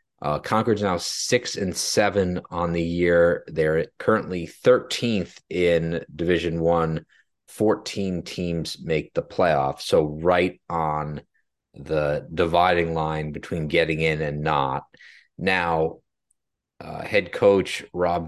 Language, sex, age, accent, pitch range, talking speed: English, male, 30-49, American, 80-95 Hz, 120 wpm